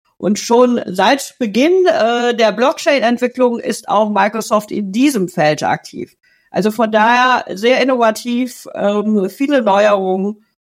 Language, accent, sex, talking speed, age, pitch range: German, German, female, 125 wpm, 50-69, 200-250 Hz